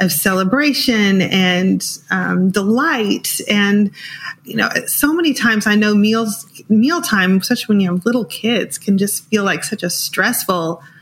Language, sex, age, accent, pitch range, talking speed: English, female, 30-49, American, 185-220 Hz, 150 wpm